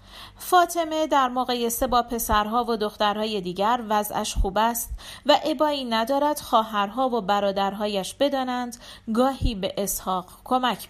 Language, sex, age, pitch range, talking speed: Persian, female, 40-59, 195-280 Hz, 120 wpm